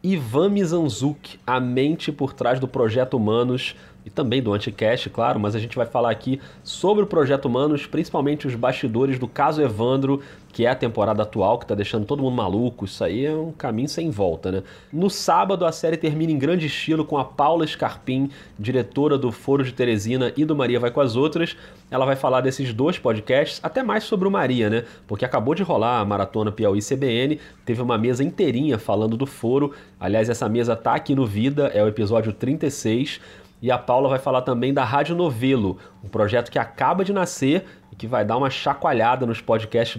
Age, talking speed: 30-49, 200 wpm